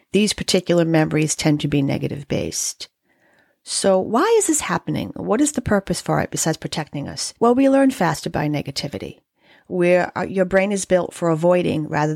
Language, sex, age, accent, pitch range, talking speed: English, female, 40-59, American, 160-215 Hz, 170 wpm